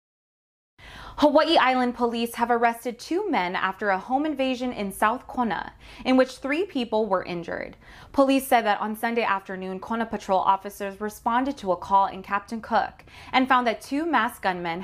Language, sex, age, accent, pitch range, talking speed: English, female, 20-39, American, 195-250 Hz, 170 wpm